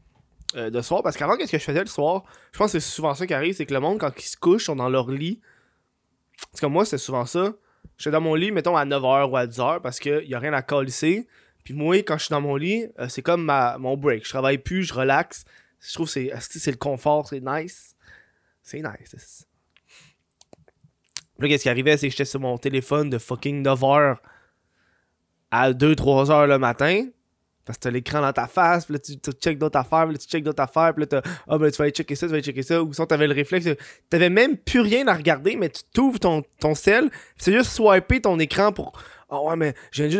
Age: 20-39